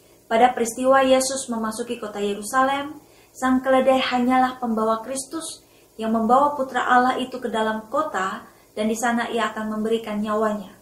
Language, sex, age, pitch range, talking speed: Indonesian, female, 20-39, 215-255 Hz, 145 wpm